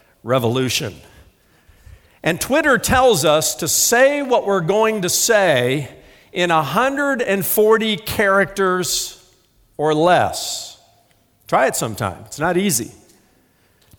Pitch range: 135-220 Hz